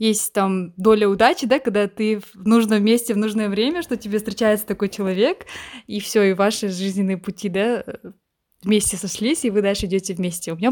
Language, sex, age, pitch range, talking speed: Russian, female, 20-39, 195-235 Hz, 190 wpm